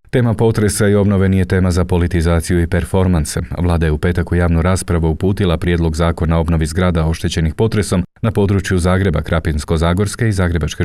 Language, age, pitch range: Croatian, 40-59, 85-100 Hz